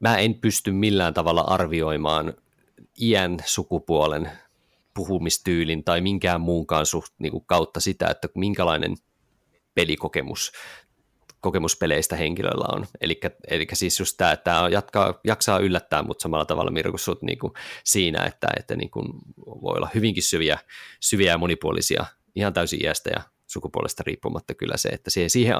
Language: Finnish